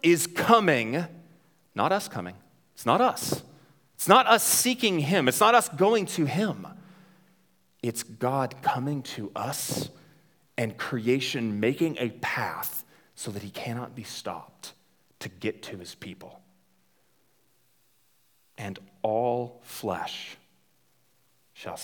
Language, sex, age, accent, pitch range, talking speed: English, male, 40-59, American, 110-165 Hz, 120 wpm